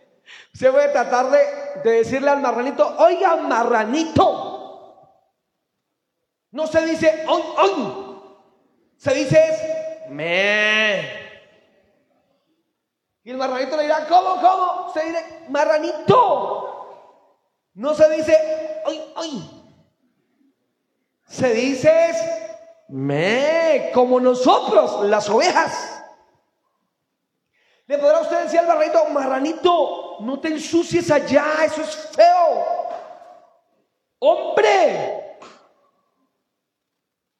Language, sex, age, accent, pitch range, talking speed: Spanish, male, 30-49, Mexican, 220-325 Hz, 90 wpm